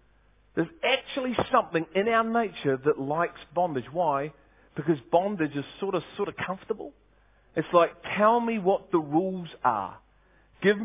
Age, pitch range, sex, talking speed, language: 40-59, 155-205 Hz, male, 150 wpm, English